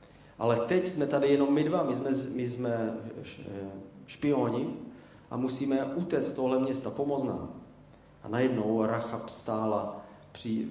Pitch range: 110-135 Hz